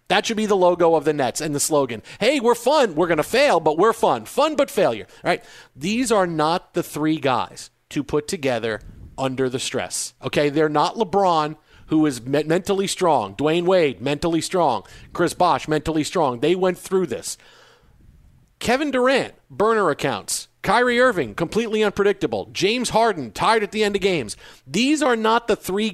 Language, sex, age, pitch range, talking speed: English, male, 40-59, 150-210 Hz, 185 wpm